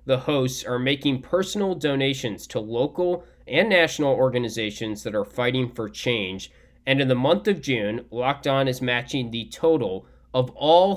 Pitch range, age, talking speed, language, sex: 120-160 Hz, 20-39, 165 wpm, English, male